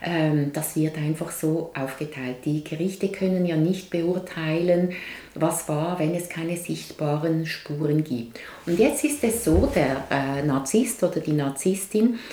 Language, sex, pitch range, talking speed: German, female, 155-195 Hz, 145 wpm